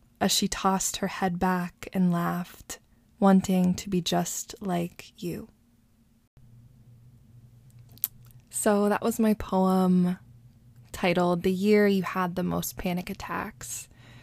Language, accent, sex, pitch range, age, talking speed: English, American, female, 120-190 Hz, 20-39, 120 wpm